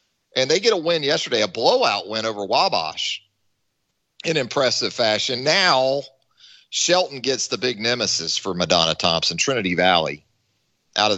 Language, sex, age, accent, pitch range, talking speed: English, male, 40-59, American, 110-160 Hz, 145 wpm